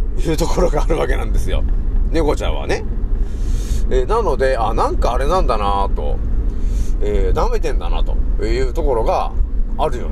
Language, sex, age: Japanese, male, 40-59